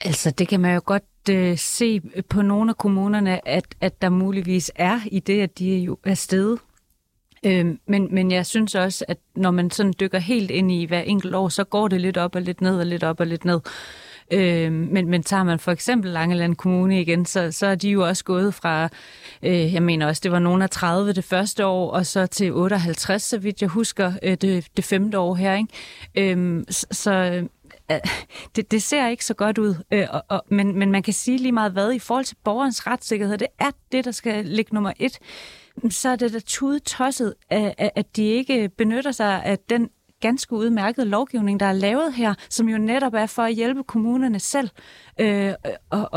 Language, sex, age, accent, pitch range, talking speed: Danish, female, 30-49, native, 185-220 Hz, 200 wpm